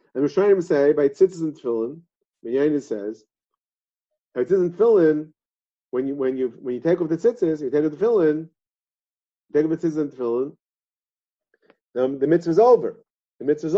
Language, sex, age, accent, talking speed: English, male, 50-69, American, 170 wpm